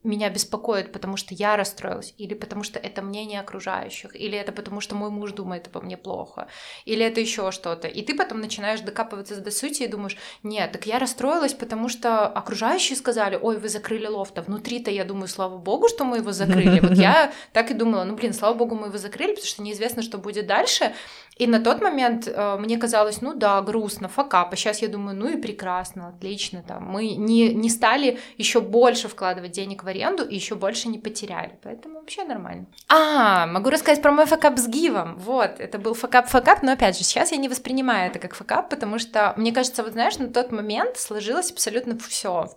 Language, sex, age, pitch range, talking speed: Russian, female, 20-39, 200-240 Hz, 205 wpm